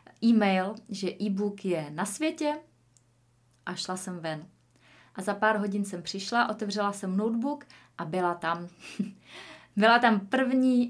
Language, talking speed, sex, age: Czech, 140 wpm, female, 20-39